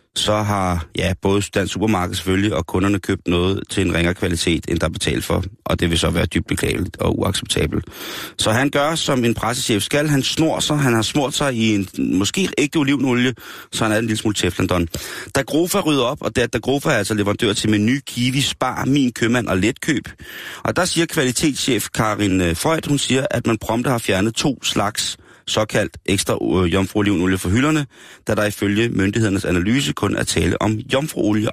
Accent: native